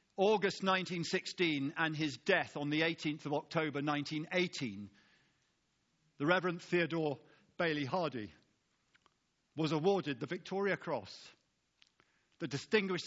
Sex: male